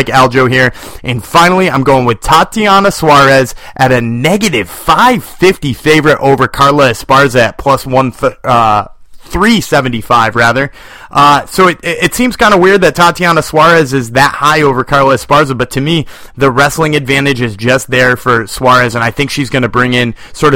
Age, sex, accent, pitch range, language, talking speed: 30-49, male, American, 130-175 Hz, English, 180 wpm